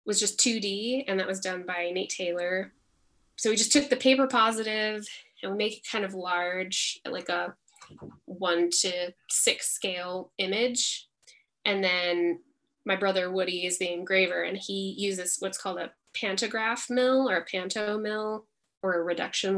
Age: 10-29